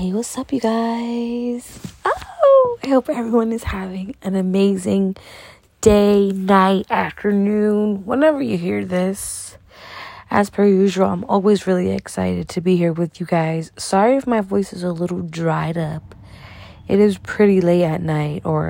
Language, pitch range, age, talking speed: English, 155-205 Hz, 20-39, 155 wpm